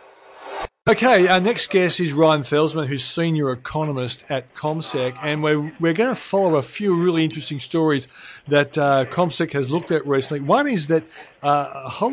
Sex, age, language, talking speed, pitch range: male, 40-59, English, 180 wpm, 145-185 Hz